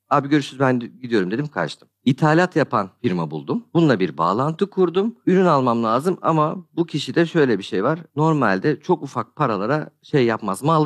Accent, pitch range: native, 125-175 Hz